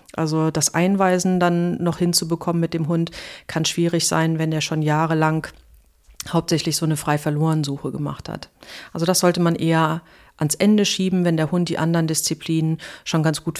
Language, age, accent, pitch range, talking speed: German, 40-59, German, 160-180 Hz, 175 wpm